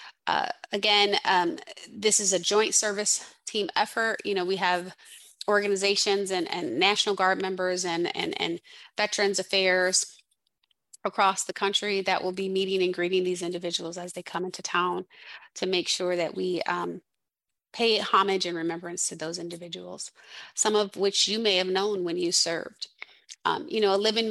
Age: 30-49